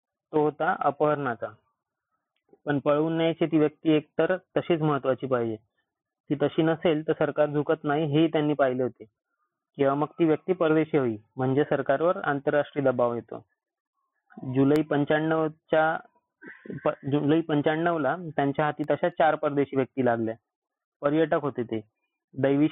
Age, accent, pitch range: 30-49, native, 140-155 Hz